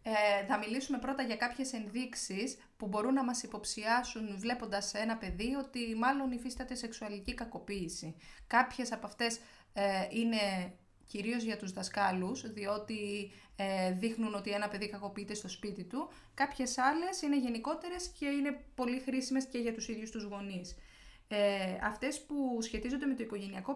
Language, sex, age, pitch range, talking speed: Greek, female, 20-39, 205-250 Hz, 155 wpm